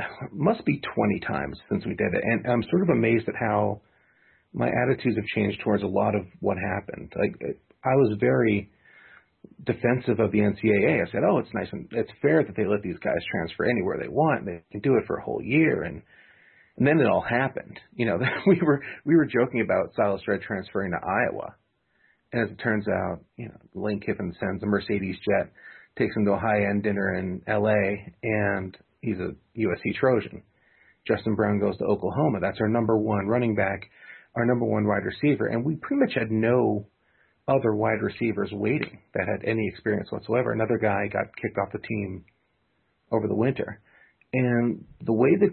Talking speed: 195 wpm